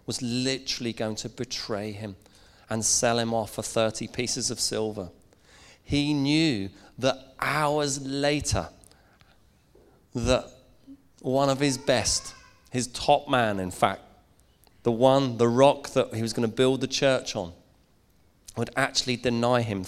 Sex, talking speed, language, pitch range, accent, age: male, 140 wpm, English, 105-125 Hz, British, 30-49